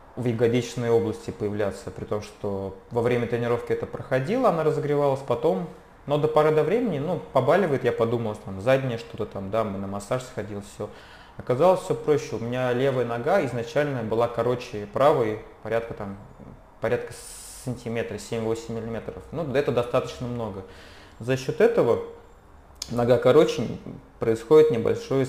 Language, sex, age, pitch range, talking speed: Russian, male, 20-39, 110-130 Hz, 145 wpm